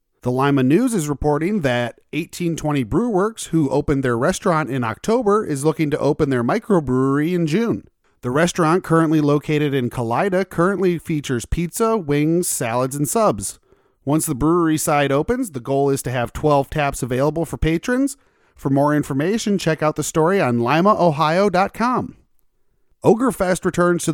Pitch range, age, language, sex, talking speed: 135-185 Hz, 30-49, English, male, 155 wpm